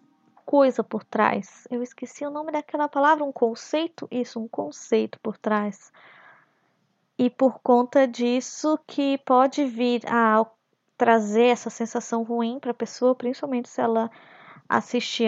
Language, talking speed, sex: Portuguese, 140 wpm, female